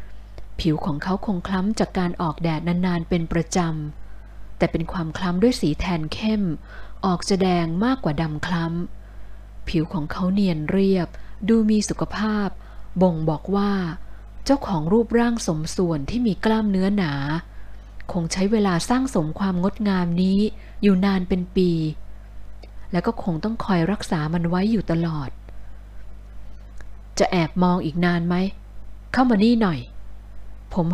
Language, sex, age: Thai, female, 20-39